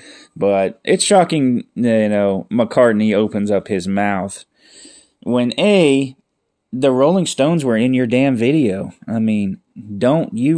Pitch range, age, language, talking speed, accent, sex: 100-135 Hz, 20-39, English, 135 wpm, American, male